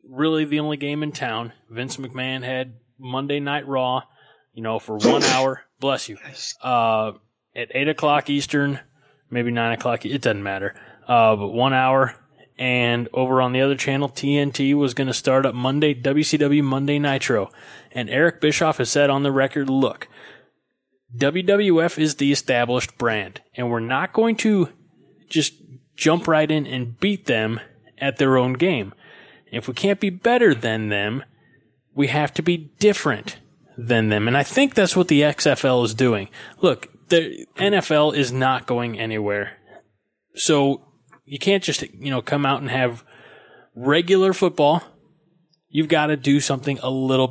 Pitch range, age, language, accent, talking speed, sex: 125-150 Hz, 20-39, English, American, 165 wpm, male